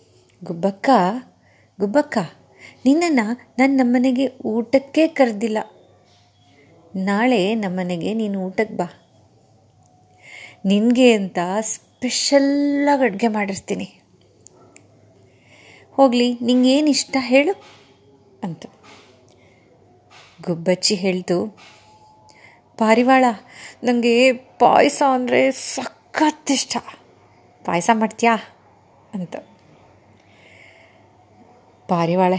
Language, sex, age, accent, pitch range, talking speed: Kannada, female, 30-49, native, 165-250 Hz, 60 wpm